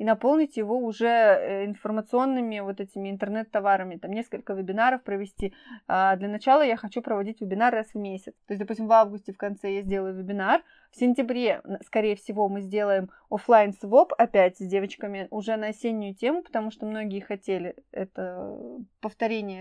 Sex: female